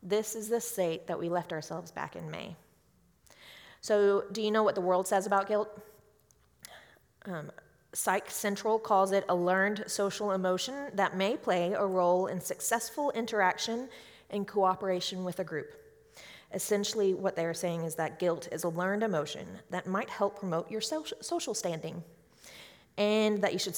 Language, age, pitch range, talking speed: English, 30-49, 180-220 Hz, 165 wpm